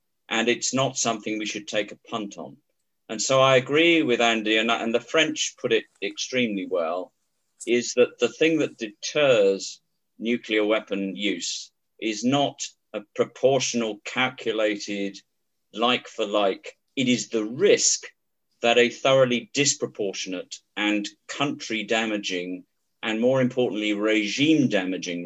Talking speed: 125 wpm